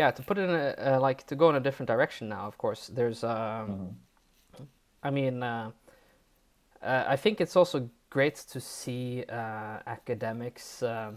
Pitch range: 110-135 Hz